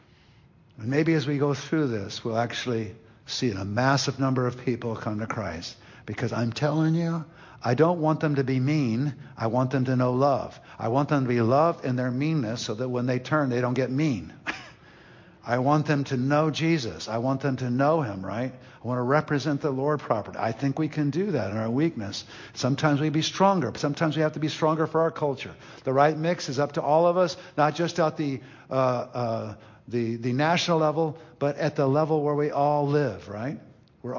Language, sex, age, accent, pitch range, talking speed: English, male, 60-79, American, 120-155 Hz, 215 wpm